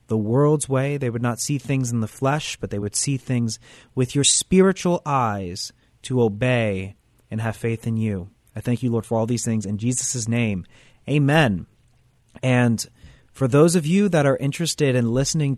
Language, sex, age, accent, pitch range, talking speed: English, male, 30-49, American, 115-155 Hz, 190 wpm